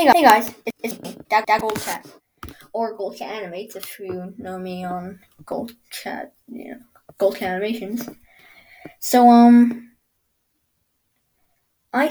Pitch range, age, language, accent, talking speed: 180-230 Hz, 20-39, English, American, 125 wpm